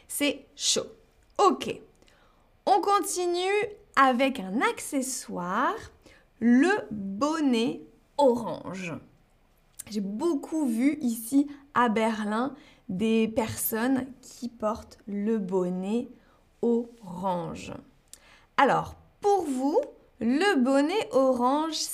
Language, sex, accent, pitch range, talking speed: French, female, French, 230-325 Hz, 80 wpm